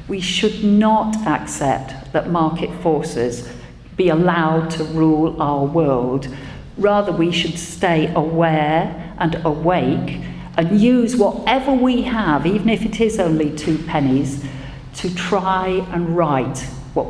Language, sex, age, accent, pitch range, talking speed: English, female, 50-69, British, 140-200 Hz, 130 wpm